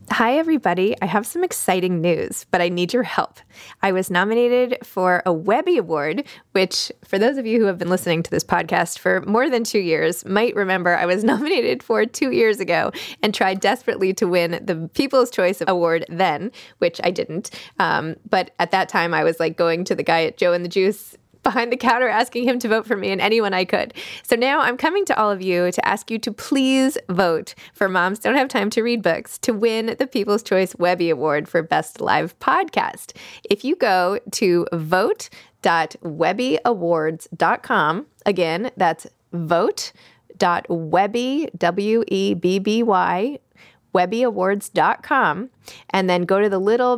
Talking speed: 180 wpm